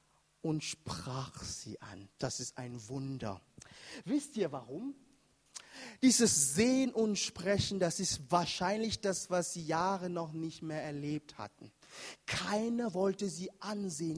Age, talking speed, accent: 30-49, 130 wpm, German